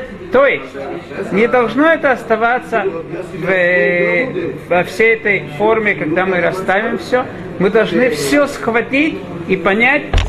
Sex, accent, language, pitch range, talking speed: male, native, Russian, 185-235 Hz, 125 wpm